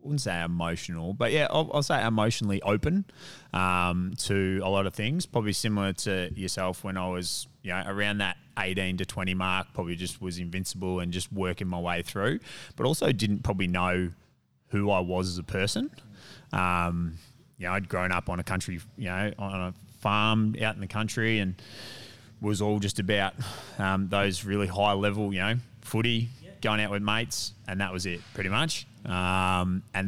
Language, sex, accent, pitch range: English, male, Australian, 90-110 Hz